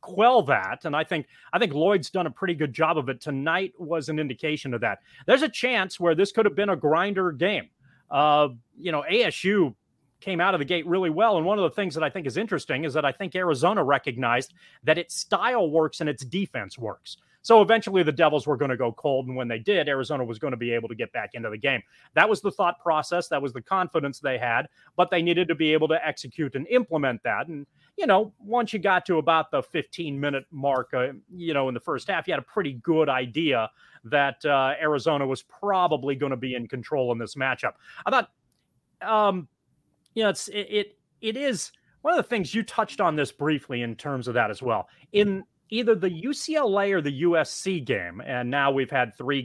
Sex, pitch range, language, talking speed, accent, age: male, 130-185 Hz, English, 225 wpm, American, 30-49